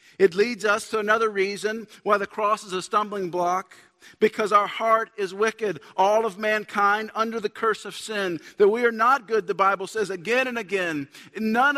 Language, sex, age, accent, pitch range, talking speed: English, male, 50-69, American, 195-235 Hz, 195 wpm